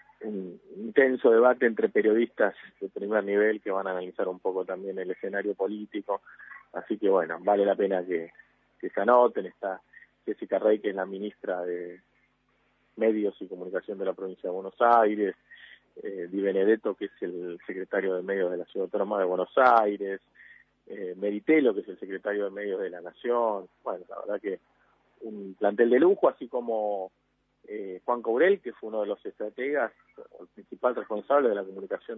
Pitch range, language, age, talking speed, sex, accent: 95-150 Hz, Spanish, 30-49, 180 wpm, male, Argentinian